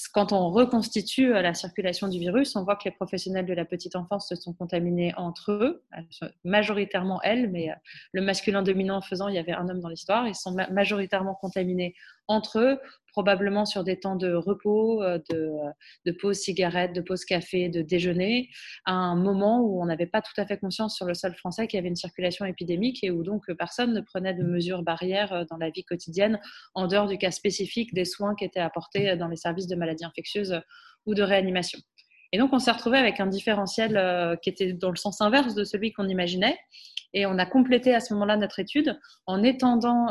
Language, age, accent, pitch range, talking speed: French, 20-39, French, 180-210 Hz, 210 wpm